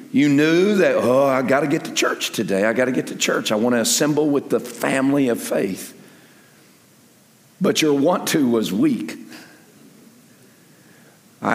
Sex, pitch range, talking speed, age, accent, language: male, 130-160 Hz, 170 wpm, 50-69, American, English